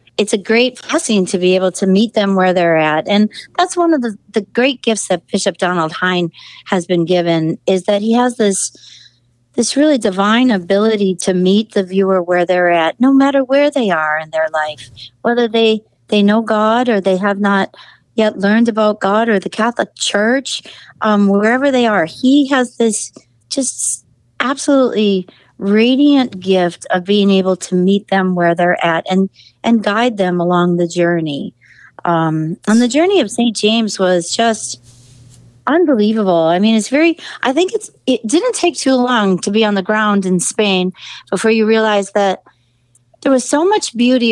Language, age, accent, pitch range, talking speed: English, 60-79, American, 180-235 Hz, 180 wpm